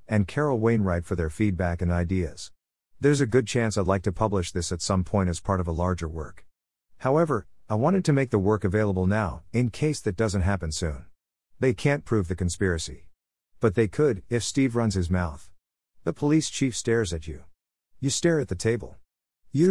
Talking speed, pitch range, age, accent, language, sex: 200 wpm, 85-125 Hz, 50-69, American, English, male